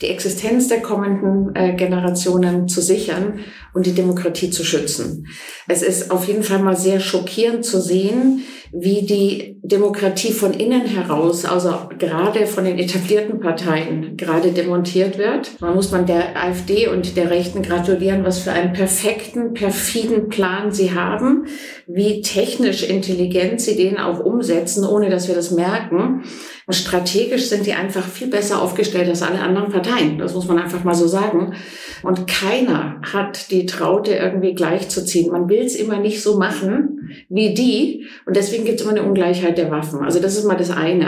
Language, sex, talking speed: German, female, 170 wpm